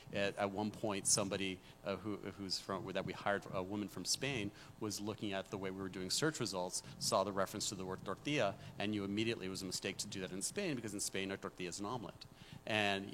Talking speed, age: 245 wpm, 40-59